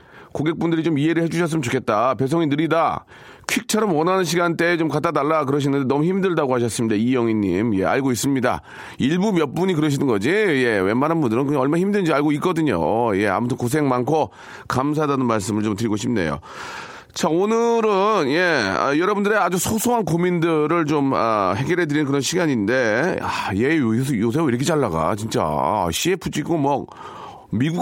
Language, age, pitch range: Korean, 40-59, 130-175 Hz